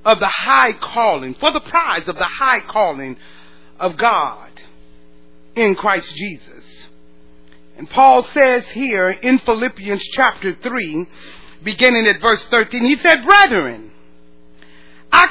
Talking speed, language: 125 wpm, English